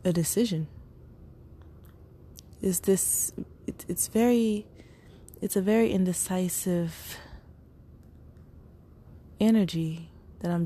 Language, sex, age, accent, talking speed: English, female, 20-39, American, 80 wpm